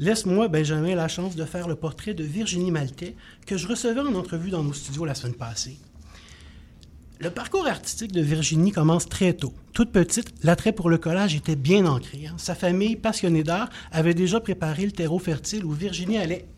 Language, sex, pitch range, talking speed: French, male, 160-205 Hz, 190 wpm